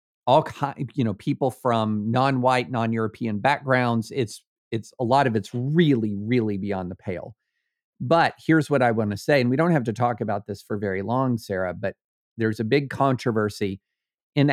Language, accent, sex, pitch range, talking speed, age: English, American, male, 105-135 Hz, 185 wpm, 50-69